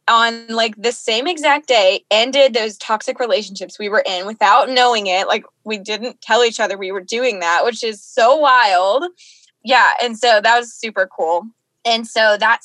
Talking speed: 190 wpm